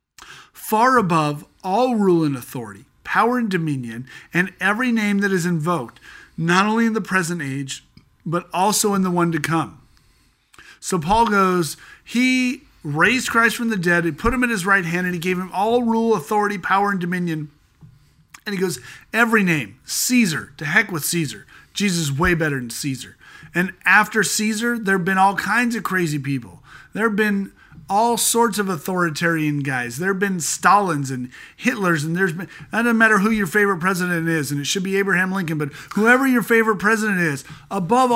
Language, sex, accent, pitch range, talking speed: English, male, American, 165-225 Hz, 185 wpm